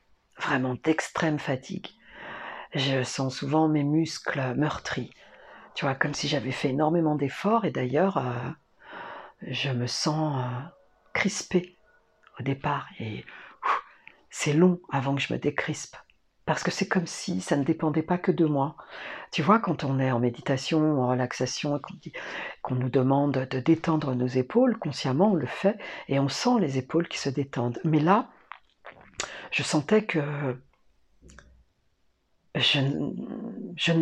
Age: 50-69